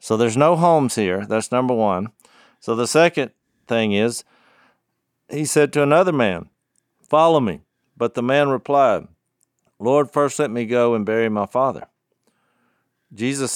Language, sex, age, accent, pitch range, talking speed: English, male, 50-69, American, 110-140 Hz, 150 wpm